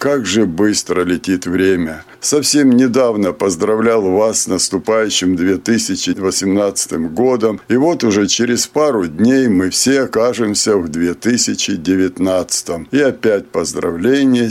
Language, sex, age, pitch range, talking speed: Russian, male, 60-79, 95-130 Hz, 110 wpm